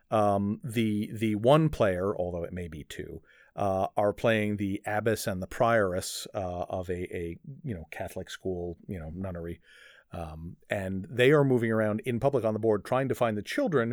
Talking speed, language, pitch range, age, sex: 195 wpm, English, 95-120 Hz, 40-59, male